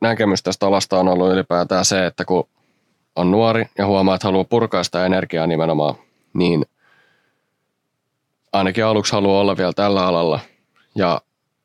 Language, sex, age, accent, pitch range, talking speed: Finnish, male, 20-39, native, 90-105 Hz, 145 wpm